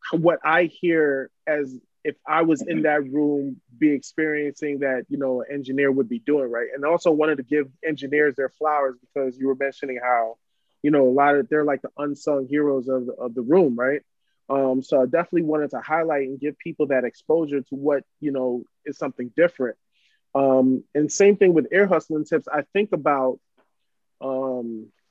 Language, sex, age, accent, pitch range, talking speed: English, male, 20-39, American, 135-155 Hz, 195 wpm